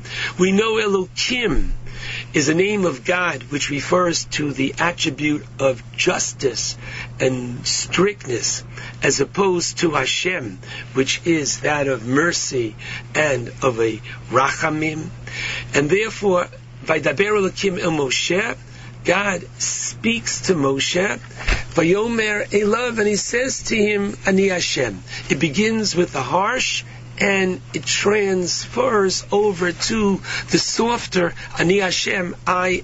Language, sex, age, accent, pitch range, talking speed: English, male, 60-79, American, 130-185 Hz, 120 wpm